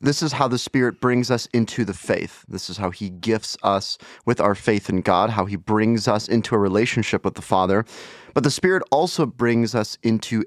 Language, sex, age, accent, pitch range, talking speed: English, male, 30-49, American, 95-125 Hz, 220 wpm